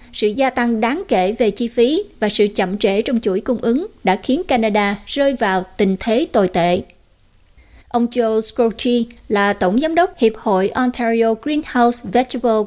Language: Vietnamese